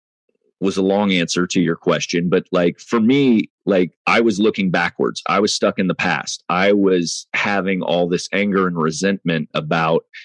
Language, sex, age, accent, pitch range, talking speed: English, male, 30-49, American, 85-105 Hz, 180 wpm